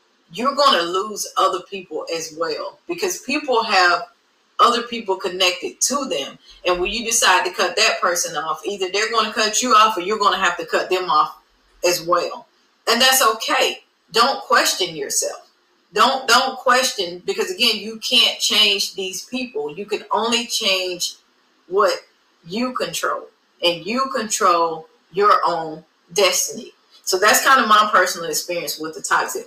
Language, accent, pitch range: English, American, 180-245 Hz